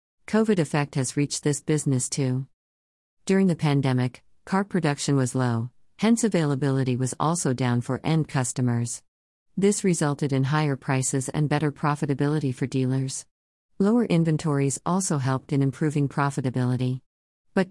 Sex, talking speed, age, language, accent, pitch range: female, 135 wpm, 50-69, English, American, 130-160 Hz